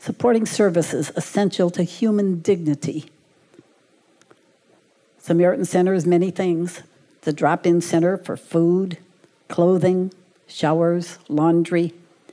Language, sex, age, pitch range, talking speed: English, female, 60-79, 160-180 Hz, 95 wpm